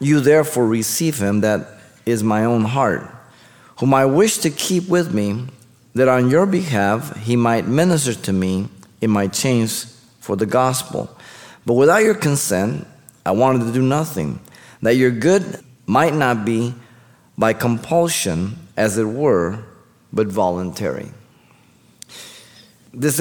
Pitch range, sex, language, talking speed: 100-130 Hz, male, English, 140 wpm